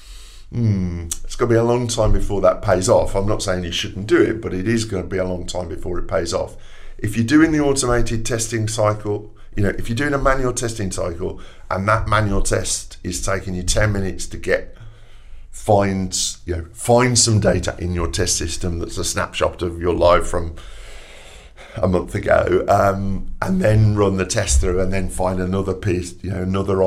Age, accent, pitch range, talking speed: 50-69, British, 90-110 Hz, 205 wpm